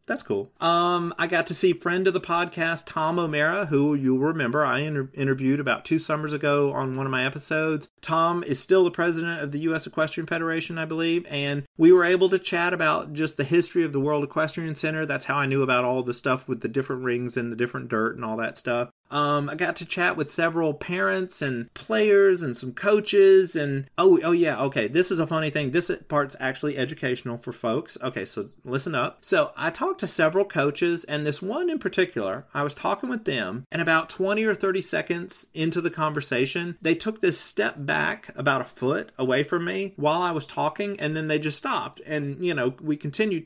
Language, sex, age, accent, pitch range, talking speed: English, male, 30-49, American, 140-175 Hz, 220 wpm